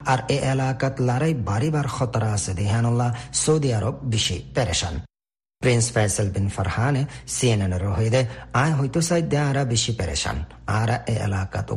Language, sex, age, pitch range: Bengali, male, 50-69, 105-135 Hz